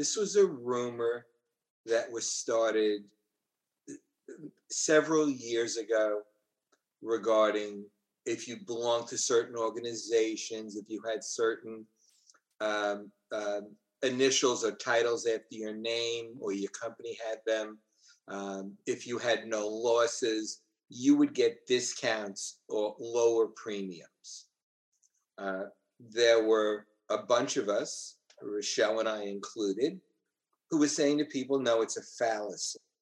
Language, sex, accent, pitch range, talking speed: English, male, American, 105-135 Hz, 120 wpm